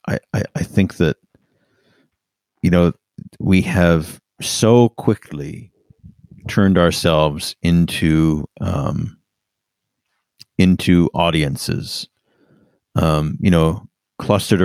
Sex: male